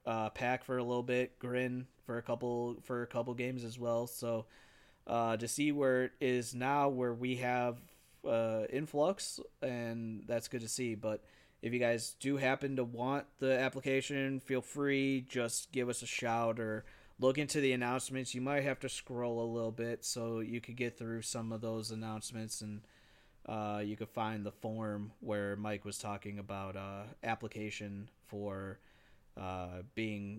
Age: 20-39